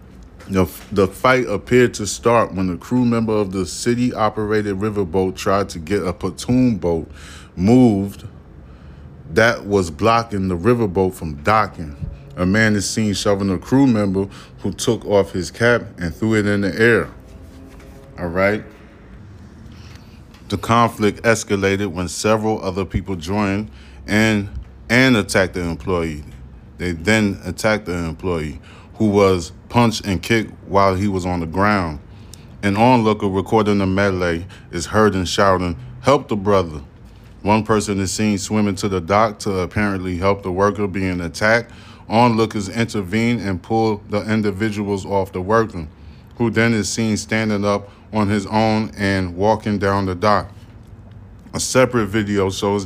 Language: English